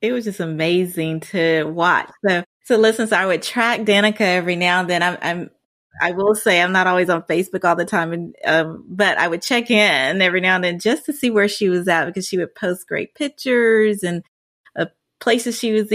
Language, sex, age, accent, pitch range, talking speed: English, female, 30-49, American, 175-220 Hz, 225 wpm